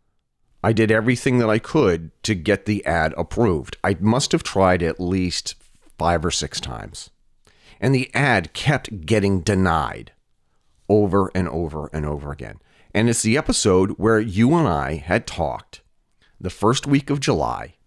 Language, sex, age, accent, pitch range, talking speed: English, male, 40-59, American, 85-115 Hz, 160 wpm